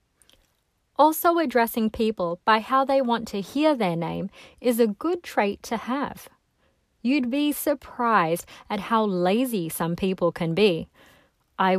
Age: 30-49